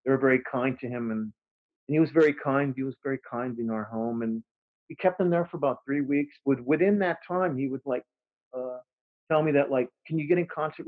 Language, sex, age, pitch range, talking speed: English, male, 40-59, 125-145 Hz, 255 wpm